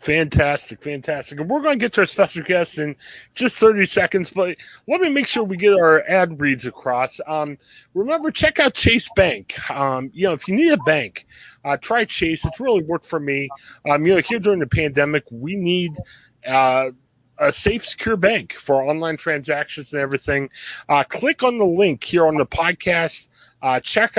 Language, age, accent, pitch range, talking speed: English, 30-49, American, 140-195 Hz, 195 wpm